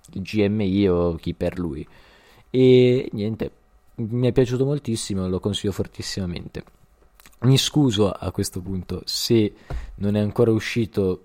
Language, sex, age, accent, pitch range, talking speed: Italian, male, 20-39, native, 95-115 Hz, 130 wpm